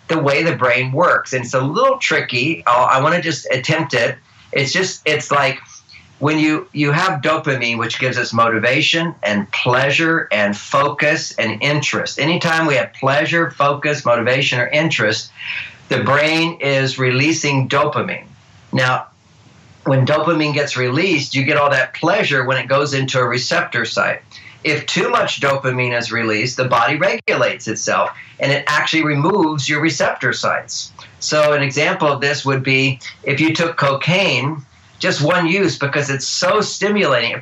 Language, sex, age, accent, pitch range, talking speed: English, male, 50-69, American, 130-160 Hz, 160 wpm